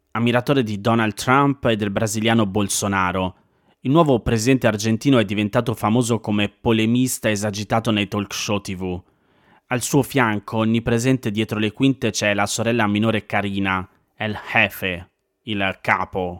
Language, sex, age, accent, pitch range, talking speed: Italian, male, 30-49, native, 100-120 Hz, 140 wpm